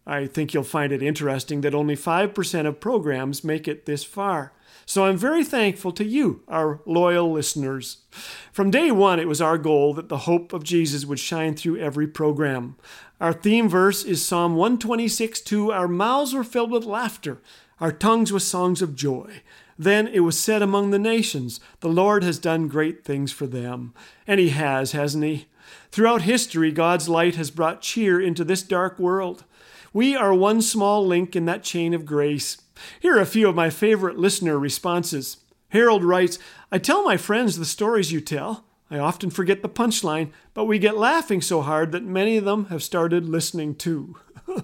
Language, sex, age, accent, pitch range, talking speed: English, male, 40-59, American, 150-200 Hz, 185 wpm